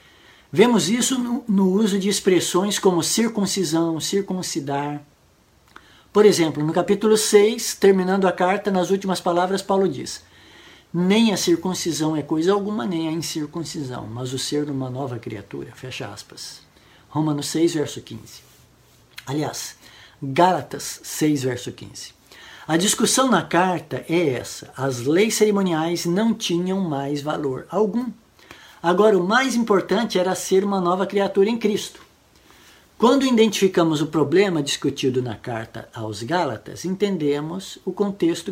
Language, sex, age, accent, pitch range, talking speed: Portuguese, male, 60-79, Brazilian, 150-200 Hz, 135 wpm